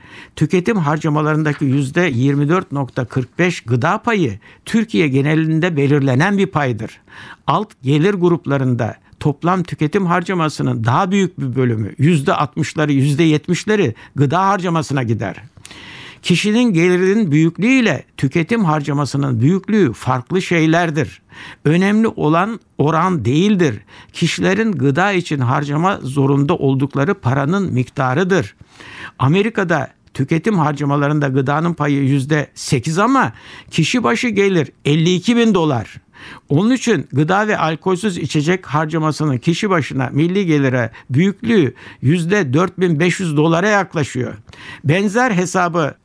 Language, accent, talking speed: Turkish, native, 95 wpm